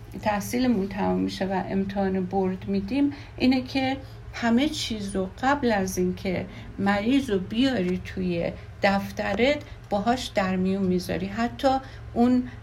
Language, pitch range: Persian, 190-250 Hz